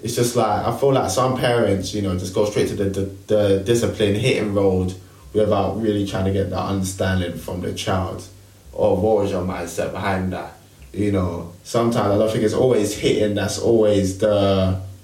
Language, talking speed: English, 195 wpm